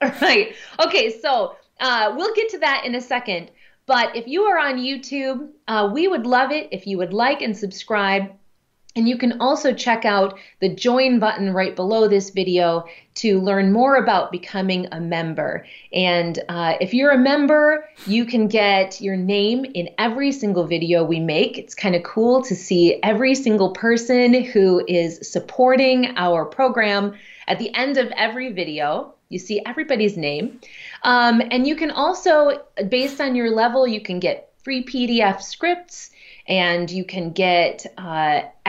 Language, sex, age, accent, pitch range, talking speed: English, female, 30-49, American, 185-250 Hz, 170 wpm